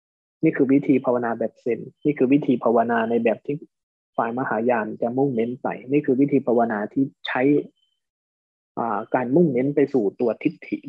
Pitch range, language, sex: 110-140 Hz, Thai, male